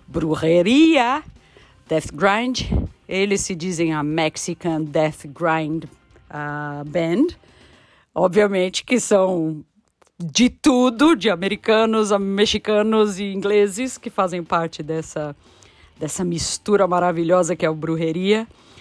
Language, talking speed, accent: Portuguese, 105 wpm, Brazilian